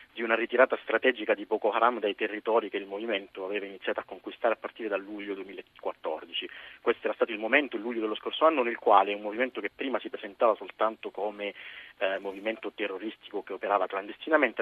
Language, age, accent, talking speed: Italian, 40-59, native, 195 wpm